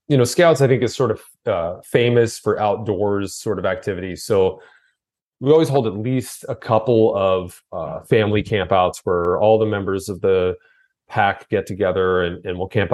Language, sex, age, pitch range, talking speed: English, male, 30-49, 95-115 Hz, 185 wpm